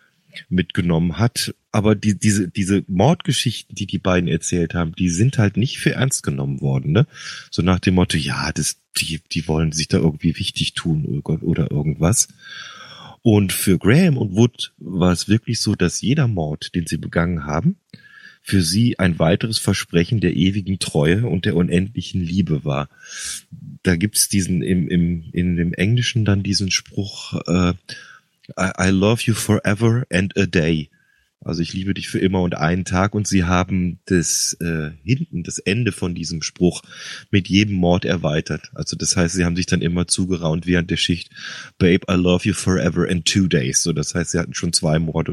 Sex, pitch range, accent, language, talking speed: male, 85-110 Hz, German, German, 185 wpm